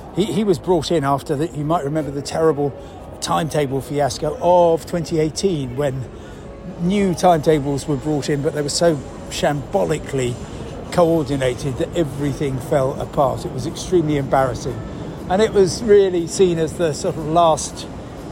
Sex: male